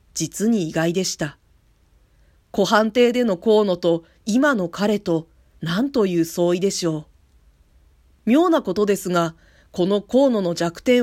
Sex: female